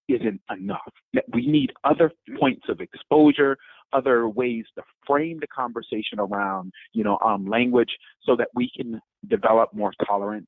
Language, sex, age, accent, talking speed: English, male, 40-59, American, 150 wpm